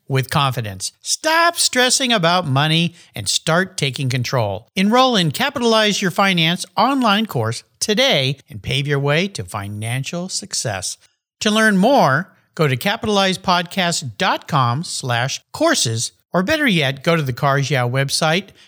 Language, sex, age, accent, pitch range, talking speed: English, male, 50-69, American, 125-185 Hz, 130 wpm